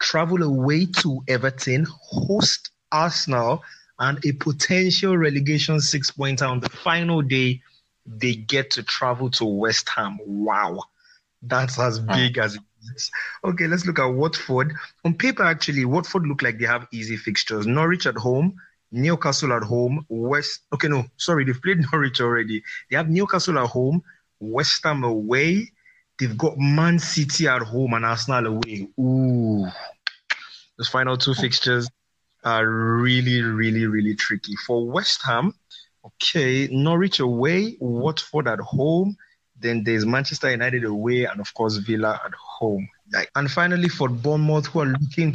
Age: 30-49